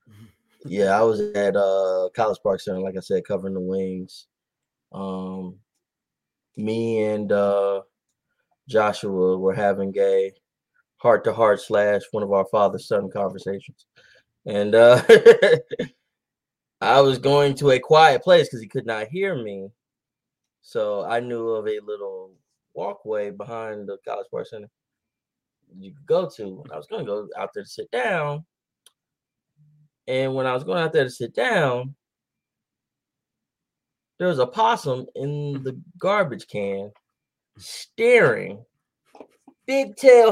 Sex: male